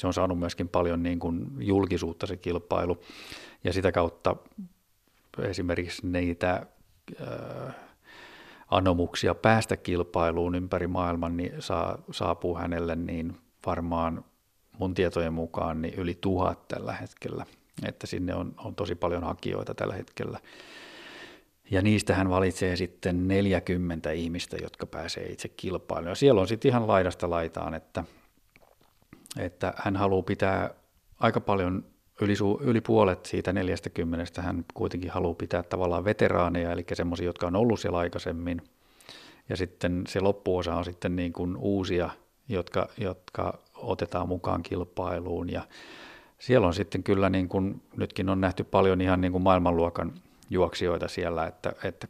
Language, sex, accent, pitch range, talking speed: Finnish, male, native, 85-100 Hz, 140 wpm